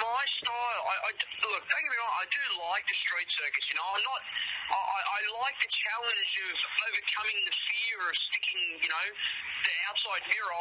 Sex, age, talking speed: male, 20-39, 200 wpm